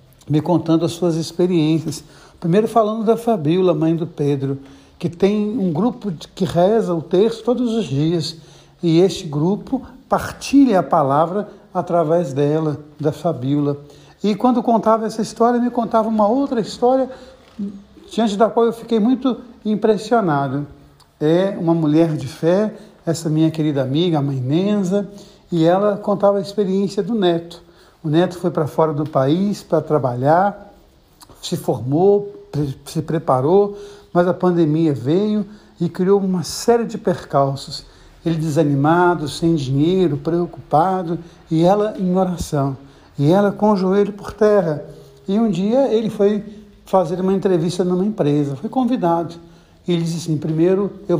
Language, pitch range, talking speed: Portuguese, 160-205 Hz, 150 wpm